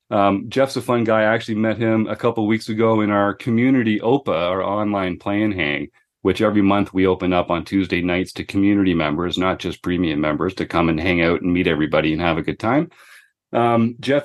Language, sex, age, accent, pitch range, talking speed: English, male, 40-59, American, 100-125 Hz, 220 wpm